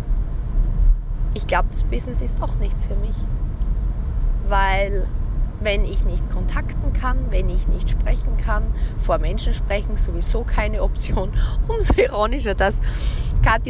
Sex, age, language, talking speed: female, 20-39, German, 130 wpm